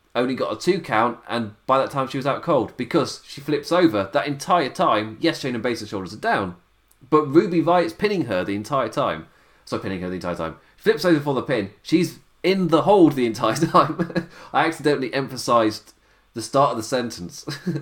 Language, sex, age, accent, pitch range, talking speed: English, male, 20-39, British, 100-155 Hz, 210 wpm